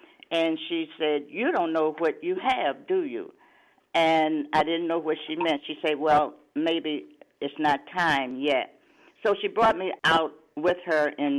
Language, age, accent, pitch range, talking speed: English, 50-69, American, 155-230 Hz, 180 wpm